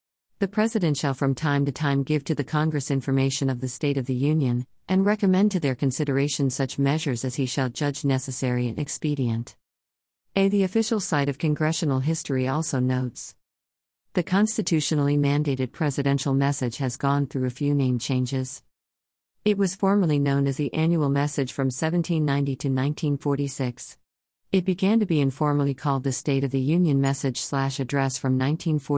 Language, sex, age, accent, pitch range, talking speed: English, female, 50-69, American, 130-160 Hz, 165 wpm